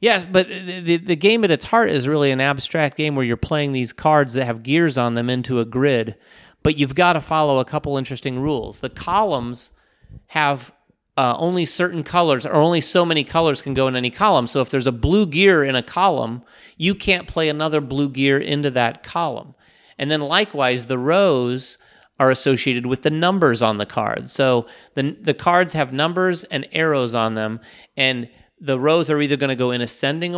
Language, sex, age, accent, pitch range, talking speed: English, male, 30-49, American, 125-160 Hz, 200 wpm